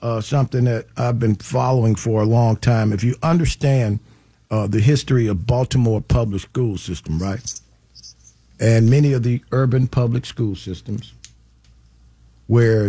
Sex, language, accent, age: male, English, American, 50-69